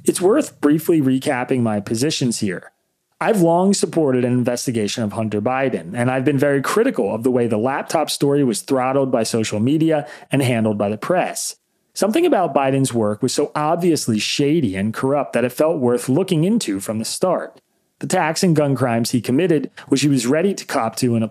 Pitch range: 115-155 Hz